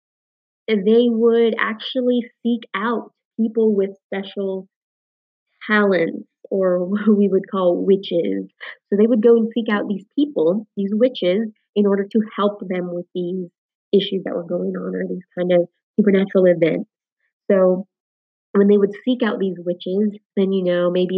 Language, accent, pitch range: English, American, 180-215 Hz